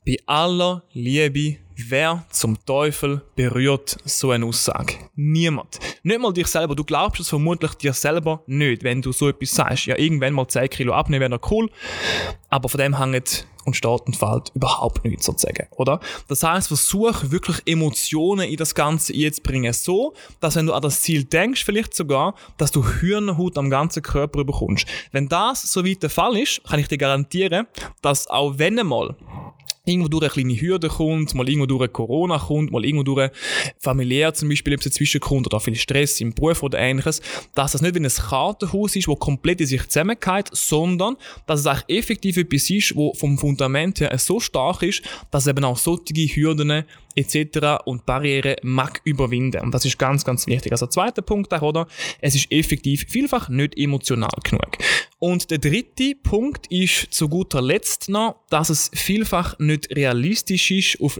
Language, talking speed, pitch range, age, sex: German, 180 wpm, 135-175 Hz, 20-39, male